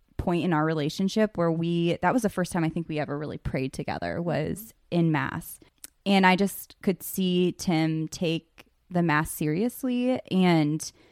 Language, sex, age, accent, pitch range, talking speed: English, female, 20-39, American, 165-195 Hz, 165 wpm